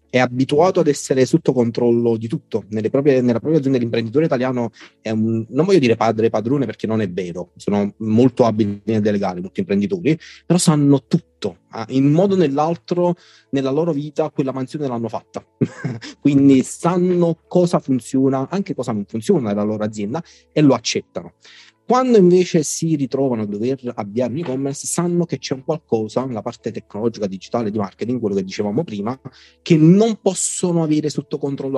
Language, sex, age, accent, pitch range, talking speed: Italian, male, 30-49, native, 115-155 Hz, 175 wpm